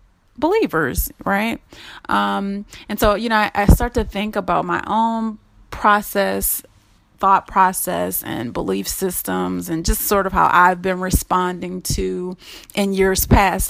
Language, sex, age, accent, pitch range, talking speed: English, female, 30-49, American, 170-205 Hz, 145 wpm